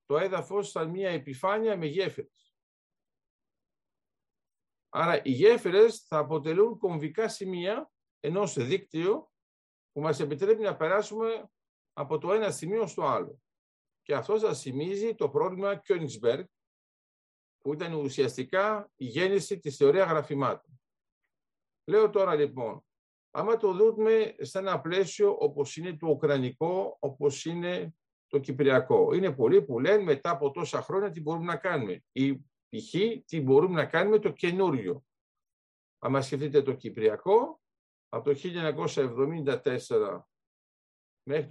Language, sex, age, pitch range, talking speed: Greek, male, 50-69, 150-220 Hz, 125 wpm